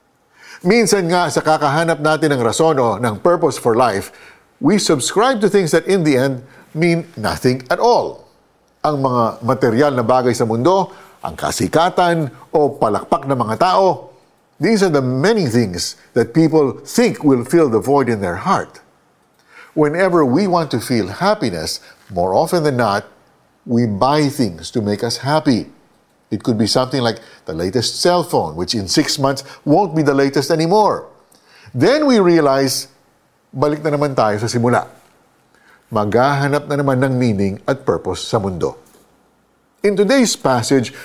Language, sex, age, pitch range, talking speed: Filipino, male, 50-69, 120-165 Hz, 160 wpm